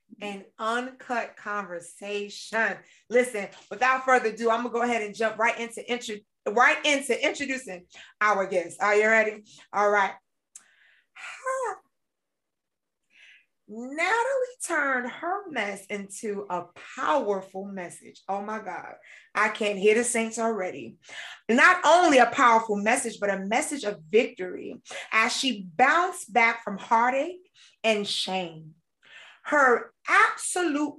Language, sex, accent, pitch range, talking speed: English, female, American, 200-260 Hz, 125 wpm